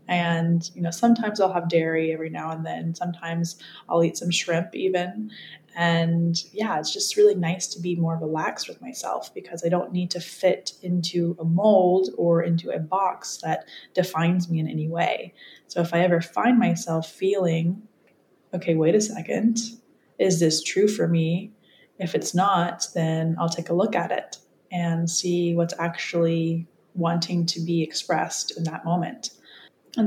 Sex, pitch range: female, 165-185 Hz